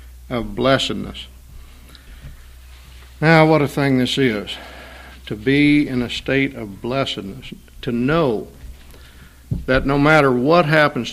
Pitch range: 125-170 Hz